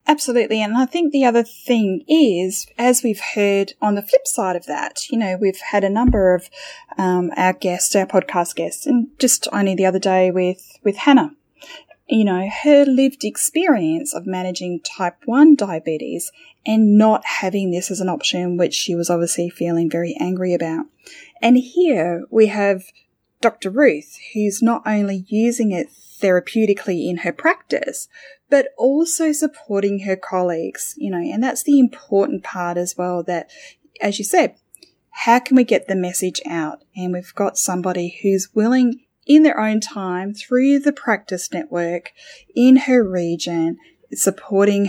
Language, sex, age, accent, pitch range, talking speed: English, female, 10-29, Australian, 180-260 Hz, 165 wpm